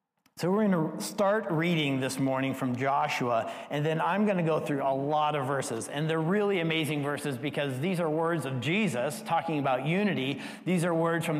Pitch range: 155-205 Hz